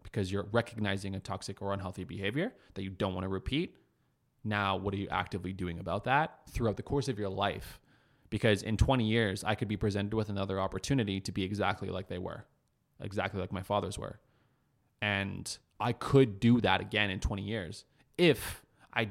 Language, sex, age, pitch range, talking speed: English, male, 20-39, 95-120 Hz, 190 wpm